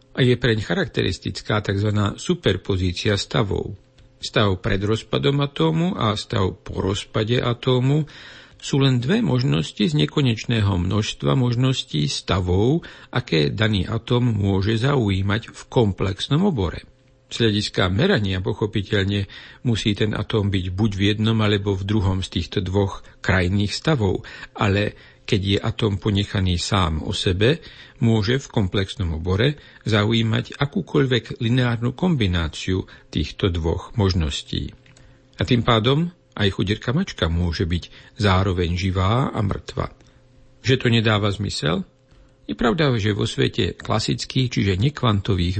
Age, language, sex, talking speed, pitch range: 60-79, Slovak, male, 125 wpm, 100-130 Hz